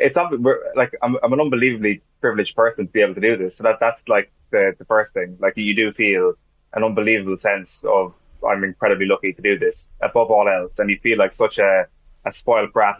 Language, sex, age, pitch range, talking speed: English, male, 20-39, 95-115 Hz, 230 wpm